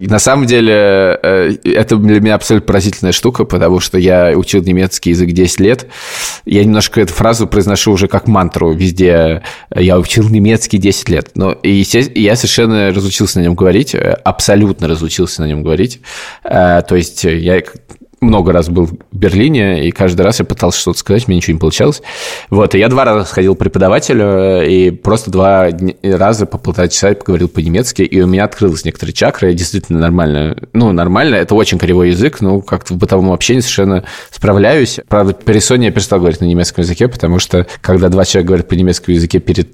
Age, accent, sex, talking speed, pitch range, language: 20-39, native, male, 180 wpm, 90-105 Hz, Russian